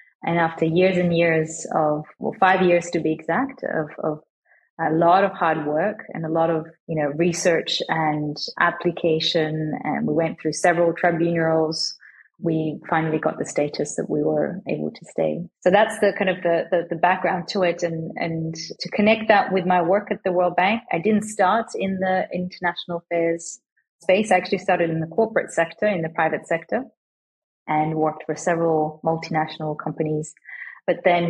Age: 30-49